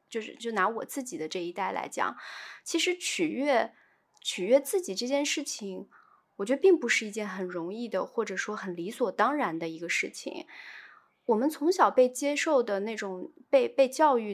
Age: 20-39